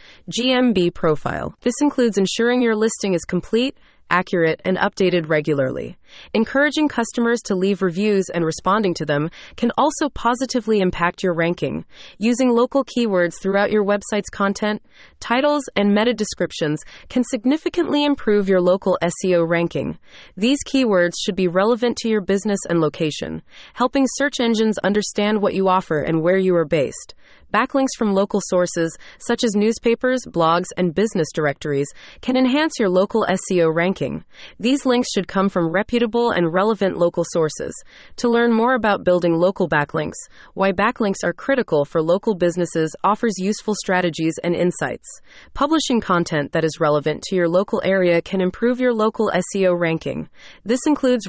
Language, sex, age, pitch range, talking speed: English, female, 30-49, 175-235 Hz, 155 wpm